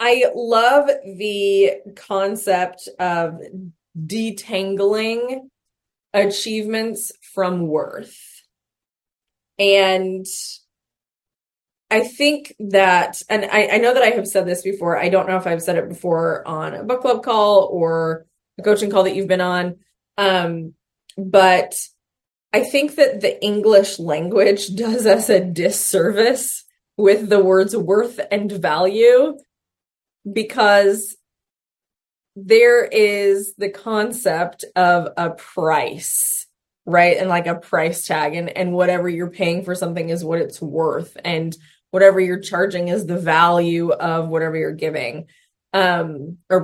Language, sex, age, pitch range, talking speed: English, female, 20-39, 175-210 Hz, 130 wpm